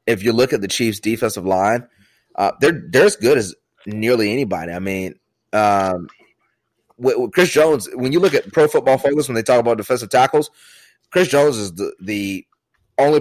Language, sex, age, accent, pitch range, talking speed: English, male, 30-49, American, 100-125 Hz, 190 wpm